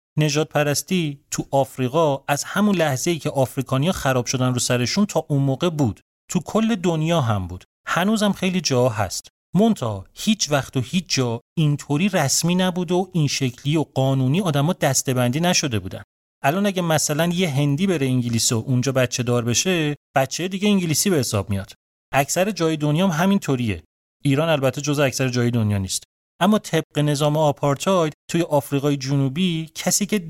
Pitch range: 130-170 Hz